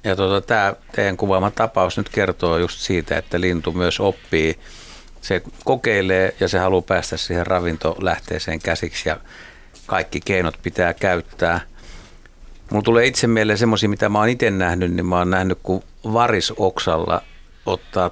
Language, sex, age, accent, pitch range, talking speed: Finnish, male, 60-79, native, 85-100 Hz, 150 wpm